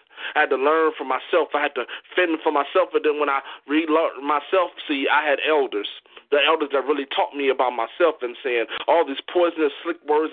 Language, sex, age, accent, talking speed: English, male, 30-49, American, 215 wpm